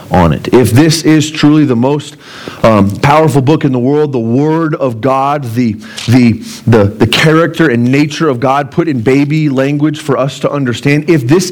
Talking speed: 195 wpm